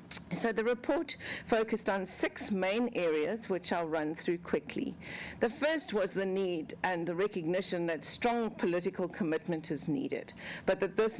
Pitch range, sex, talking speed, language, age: 170-215 Hz, female, 160 wpm, English, 50-69